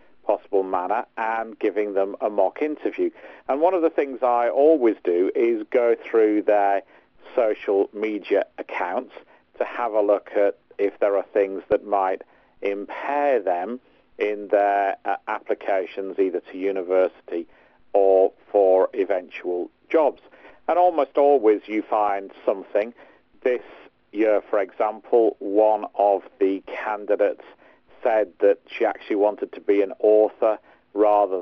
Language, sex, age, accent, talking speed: English, male, 50-69, British, 135 wpm